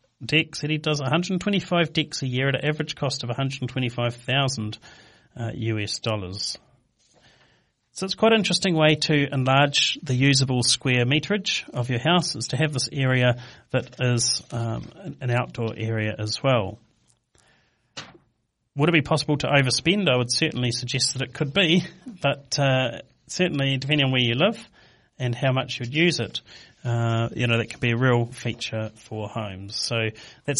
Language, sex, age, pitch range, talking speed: English, male, 40-59, 120-155 Hz, 165 wpm